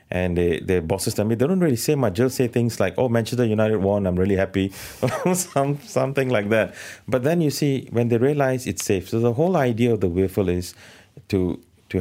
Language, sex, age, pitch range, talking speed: English, male, 30-49, 90-125 Hz, 230 wpm